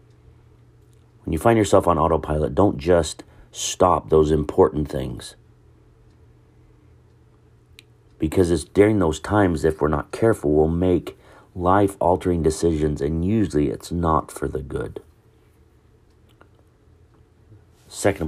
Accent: American